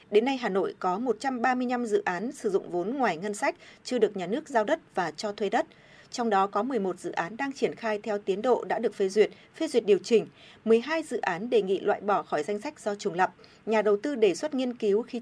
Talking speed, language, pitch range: 255 wpm, Vietnamese, 210-295 Hz